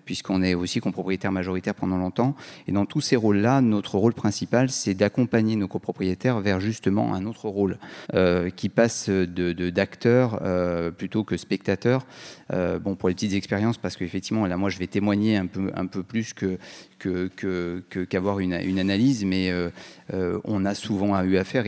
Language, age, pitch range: French, 30-49, 95-115 Hz